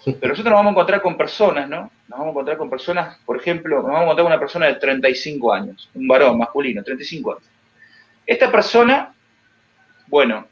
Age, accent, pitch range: 30-49, Argentinian, 125-205 Hz